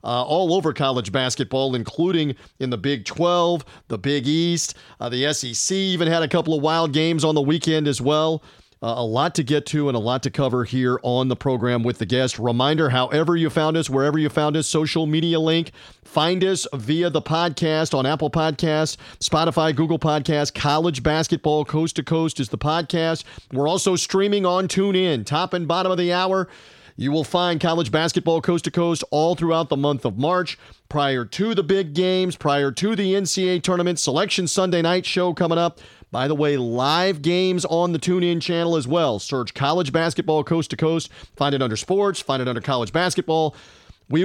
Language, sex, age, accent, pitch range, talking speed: English, male, 40-59, American, 140-175 Hz, 190 wpm